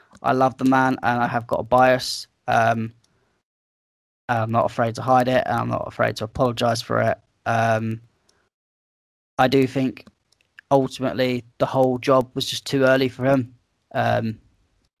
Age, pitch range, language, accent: 20-39, 115-130 Hz, English, British